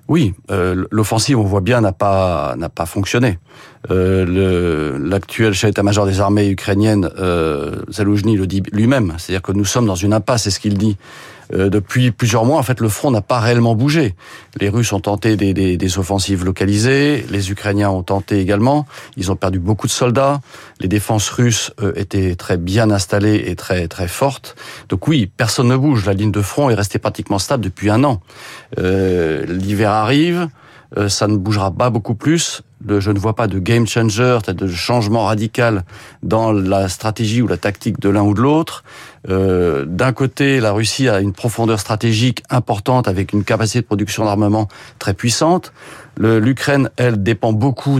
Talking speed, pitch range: 185 wpm, 100-125 Hz